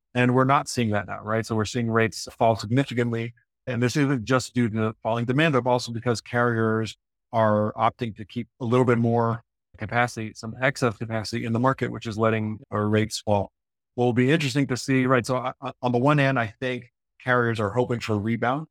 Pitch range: 105-120 Hz